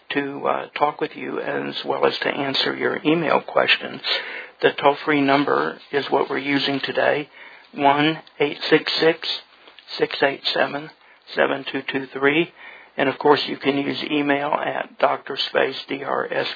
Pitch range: 135-145 Hz